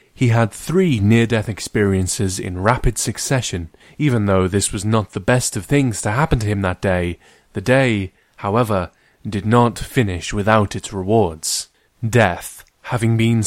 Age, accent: 20-39, British